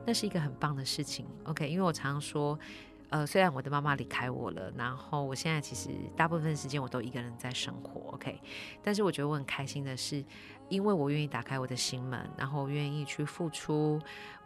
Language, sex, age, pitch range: Chinese, female, 30-49, 140-170 Hz